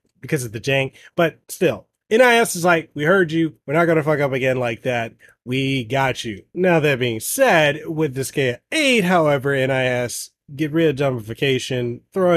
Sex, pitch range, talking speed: male, 120-165 Hz, 185 wpm